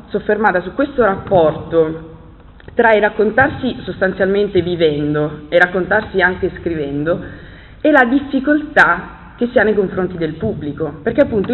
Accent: native